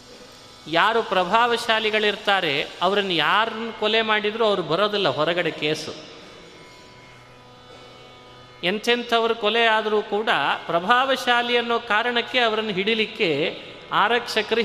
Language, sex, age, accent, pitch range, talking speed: Kannada, male, 30-49, native, 190-245 Hz, 80 wpm